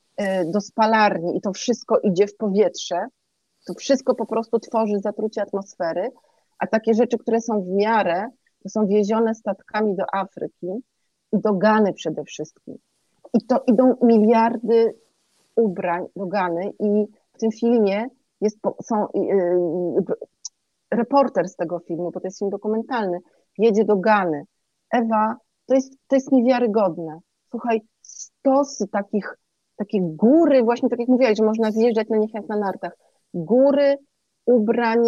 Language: Polish